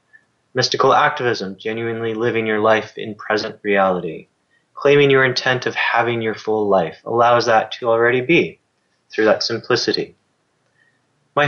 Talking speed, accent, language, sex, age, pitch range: 135 wpm, American, English, male, 20-39, 115-135 Hz